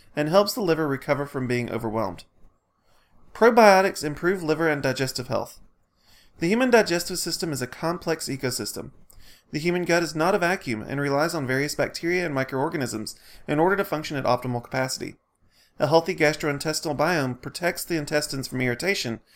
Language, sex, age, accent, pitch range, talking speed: English, male, 30-49, American, 125-170 Hz, 160 wpm